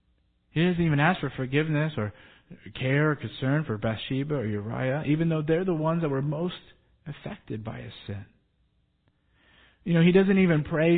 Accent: American